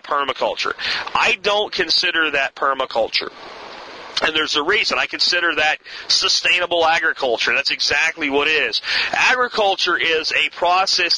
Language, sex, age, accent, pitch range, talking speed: English, male, 40-59, American, 155-190 Hz, 130 wpm